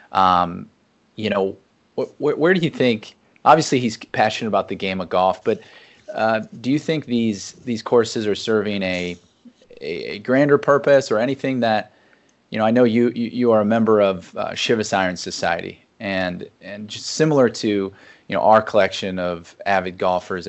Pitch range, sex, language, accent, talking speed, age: 95-120 Hz, male, English, American, 180 wpm, 30-49